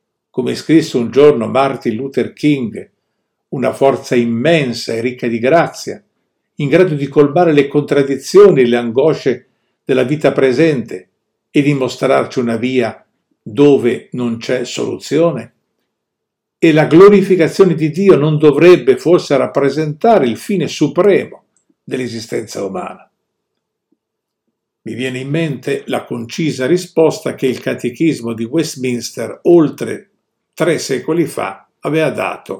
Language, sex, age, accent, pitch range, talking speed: Italian, male, 50-69, native, 120-165 Hz, 125 wpm